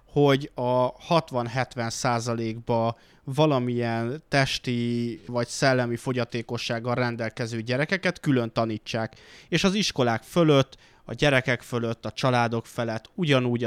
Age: 20-39